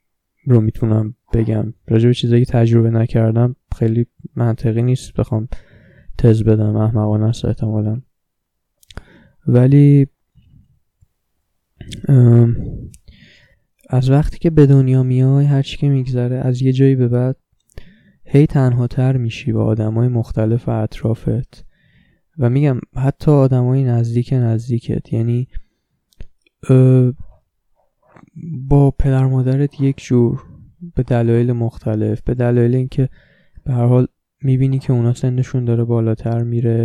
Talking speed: 115 wpm